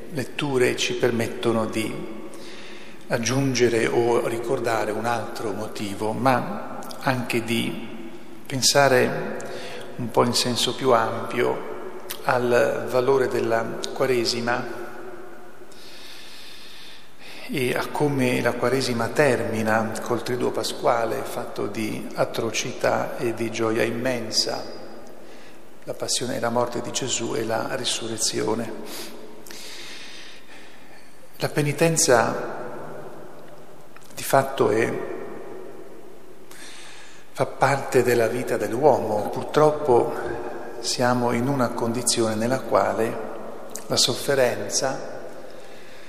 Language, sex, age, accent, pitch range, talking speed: Italian, male, 40-59, native, 115-135 Hz, 90 wpm